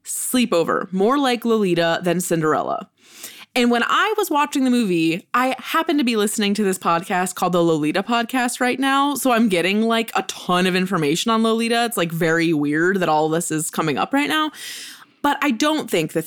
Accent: American